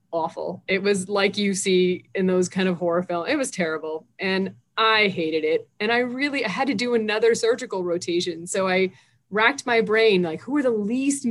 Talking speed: 205 wpm